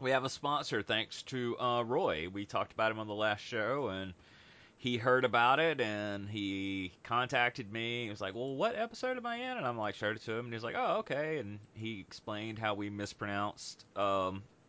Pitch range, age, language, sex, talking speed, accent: 95-135 Hz, 30-49, English, male, 215 wpm, American